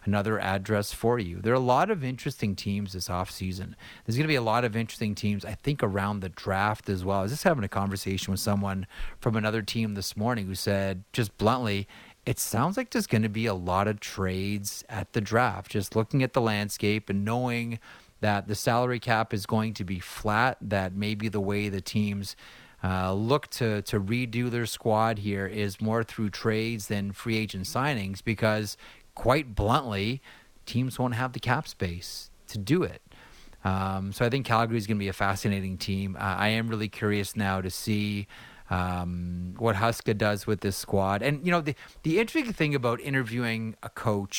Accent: American